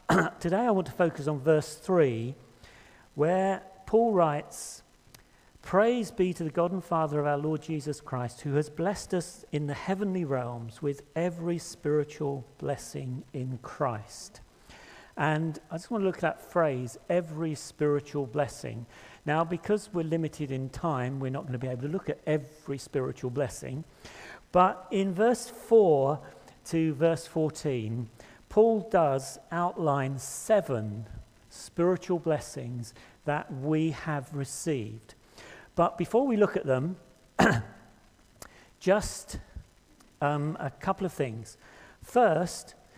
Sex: male